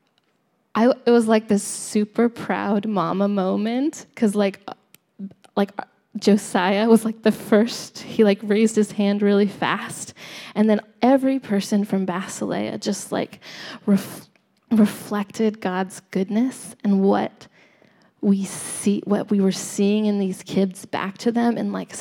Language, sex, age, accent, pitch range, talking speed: English, female, 10-29, American, 190-215 Hz, 140 wpm